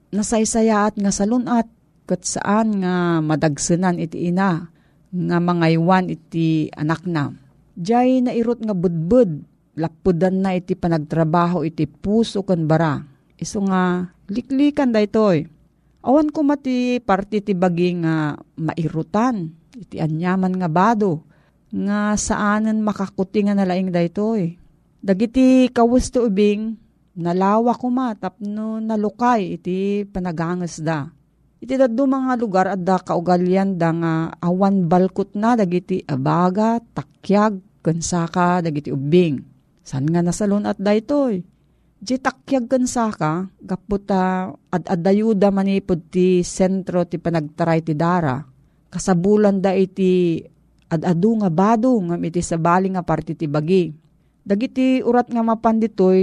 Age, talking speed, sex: 40-59, 120 wpm, female